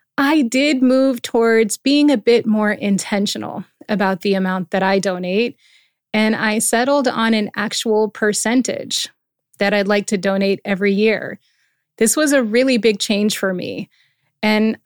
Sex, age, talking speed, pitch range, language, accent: female, 30-49, 155 wpm, 195-235 Hz, English, American